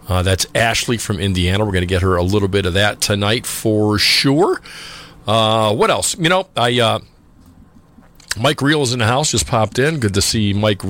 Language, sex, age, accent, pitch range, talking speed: English, male, 40-59, American, 95-135 Hz, 210 wpm